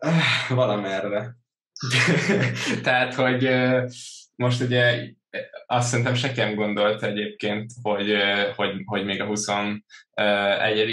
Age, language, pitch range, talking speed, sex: 10-29, Hungarian, 100-115 Hz, 90 wpm, male